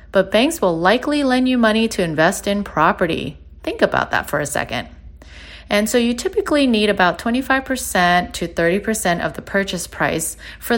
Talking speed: 175 wpm